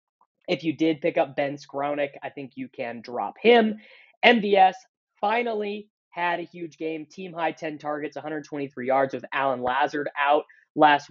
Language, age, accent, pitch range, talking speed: English, 20-39, American, 140-170 Hz, 160 wpm